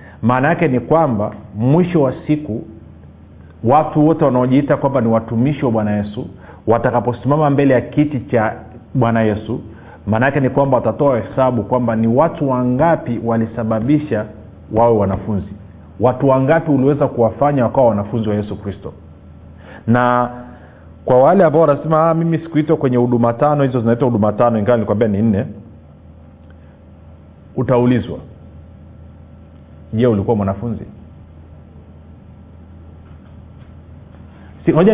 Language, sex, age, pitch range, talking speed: Swahili, male, 40-59, 95-135 Hz, 120 wpm